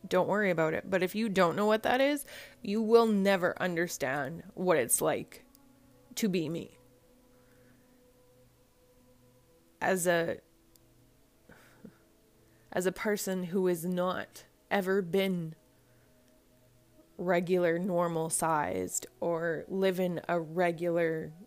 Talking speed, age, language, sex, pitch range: 110 wpm, 20-39, English, female, 130-190 Hz